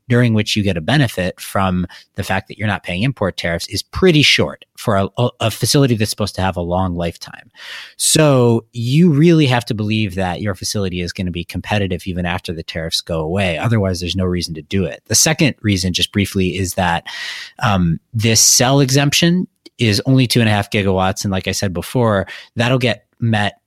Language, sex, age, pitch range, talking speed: English, male, 30-49, 95-125 Hz, 210 wpm